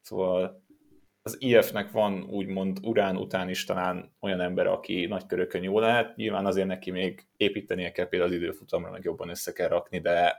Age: 20-39